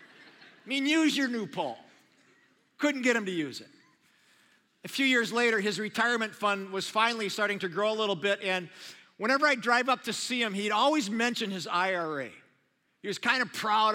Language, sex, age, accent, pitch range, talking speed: English, male, 50-69, American, 185-235 Hz, 195 wpm